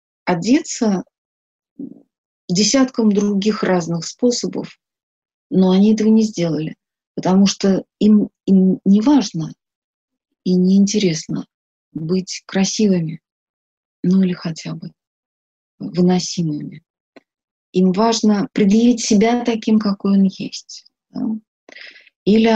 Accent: native